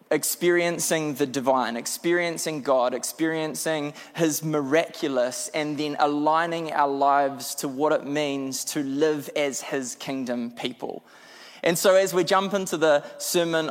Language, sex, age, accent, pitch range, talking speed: English, male, 20-39, Australian, 140-195 Hz, 135 wpm